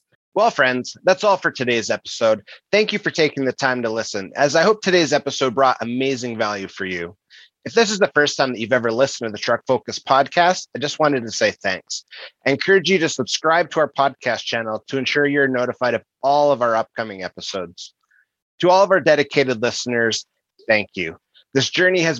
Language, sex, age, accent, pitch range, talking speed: English, male, 30-49, American, 115-150 Hz, 205 wpm